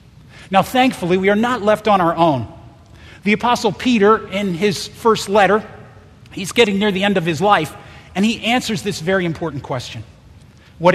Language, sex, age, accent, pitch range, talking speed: English, male, 40-59, American, 140-225 Hz, 175 wpm